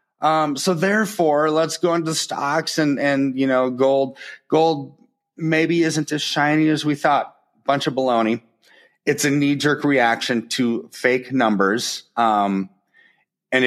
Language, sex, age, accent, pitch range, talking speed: English, male, 30-49, American, 110-140 Hz, 140 wpm